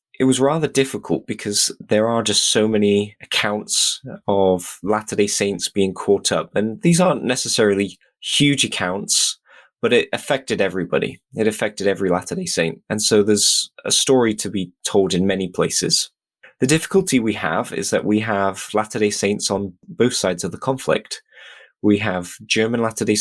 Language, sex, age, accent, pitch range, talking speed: English, male, 20-39, British, 95-110 Hz, 165 wpm